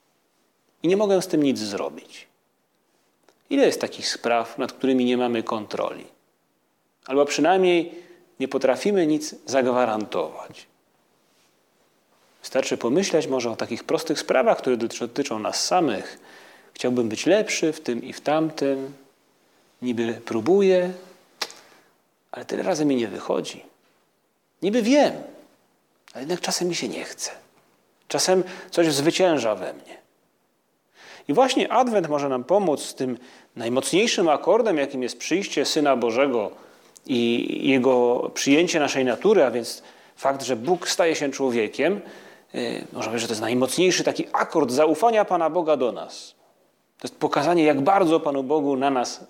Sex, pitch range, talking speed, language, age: male, 125-180 Hz, 140 wpm, Polish, 30-49